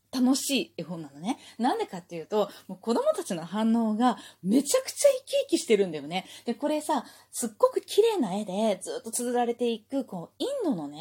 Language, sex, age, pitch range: Japanese, female, 20-39, 190-280 Hz